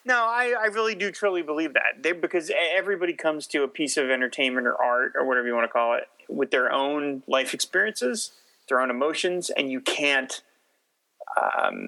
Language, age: English, 30-49